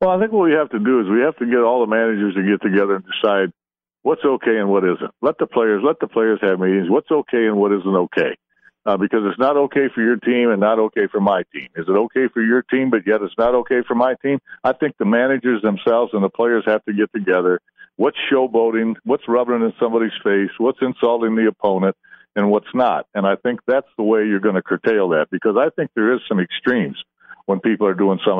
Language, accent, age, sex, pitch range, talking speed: English, American, 60-79, male, 105-135 Hz, 245 wpm